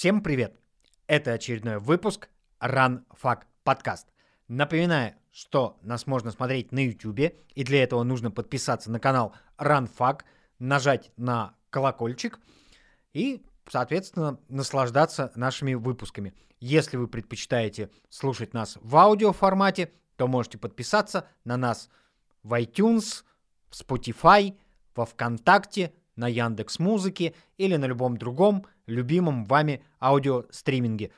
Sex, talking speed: male, 115 wpm